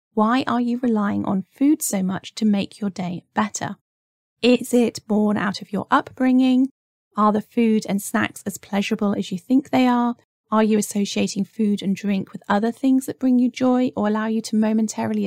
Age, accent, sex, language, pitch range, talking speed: 30-49, British, female, English, 195-240 Hz, 195 wpm